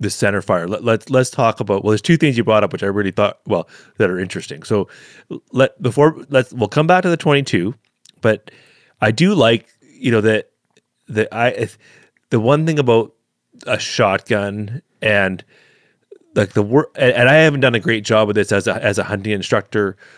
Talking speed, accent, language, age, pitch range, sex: 195 wpm, American, English, 30-49, 100-125 Hz, male